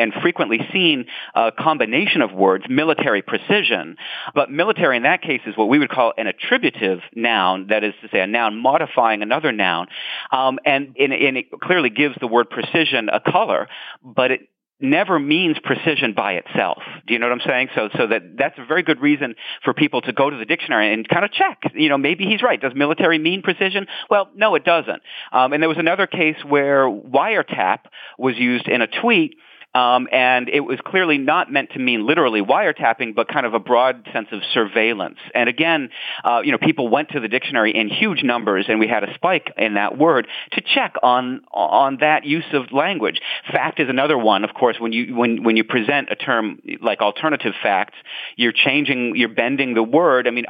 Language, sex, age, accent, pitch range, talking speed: English, male, 40-59, American, 125-165 Hz, 210 wpm